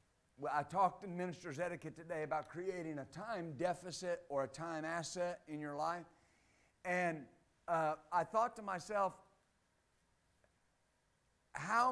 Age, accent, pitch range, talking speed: 50-69, American, 160-210 Hz, 125 wpm